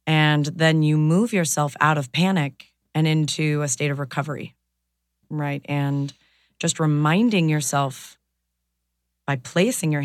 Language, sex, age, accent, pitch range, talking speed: English, female, 30-49, American, 135-170 Hz, 130 wpm